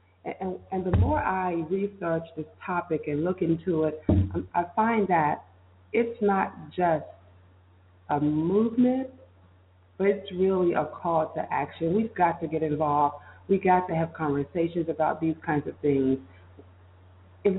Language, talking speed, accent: English, 145 wpm, American